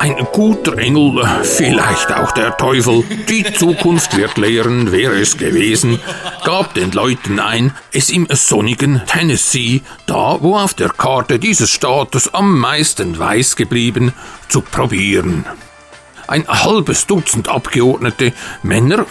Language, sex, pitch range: German, male, 115-165 Hz